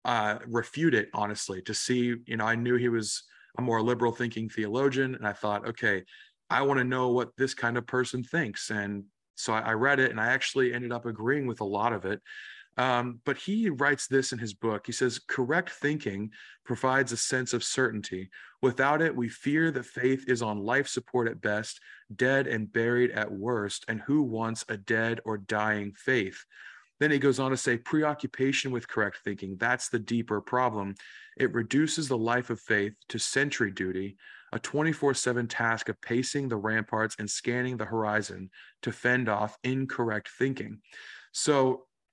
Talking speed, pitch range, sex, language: 185 wpm, 110-130 Hz, male, English